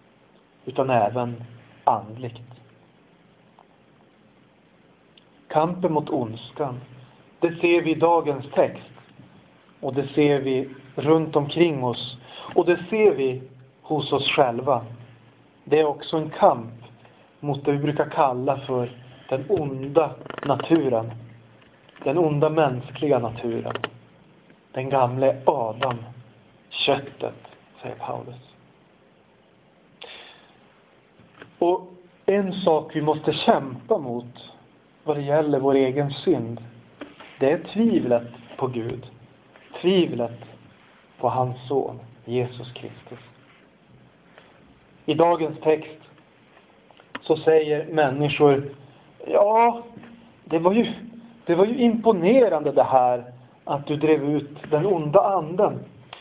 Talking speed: 105 wpm